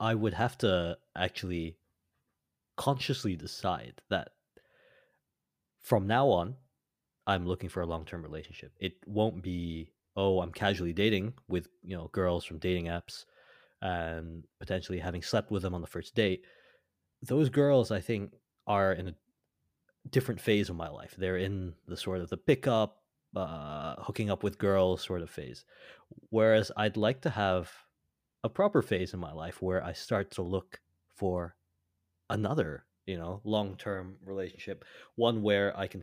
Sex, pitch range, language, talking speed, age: male, 85-105 Hz, English, 160 wpm, 30-49